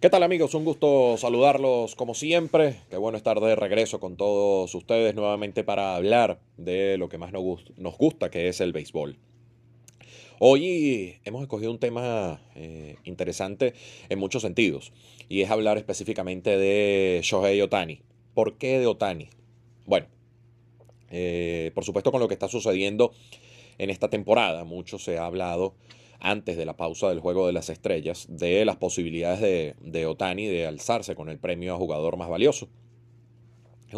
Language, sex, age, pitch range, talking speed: Spanish, male, 30-49, 95-120 Hz, 160 wpm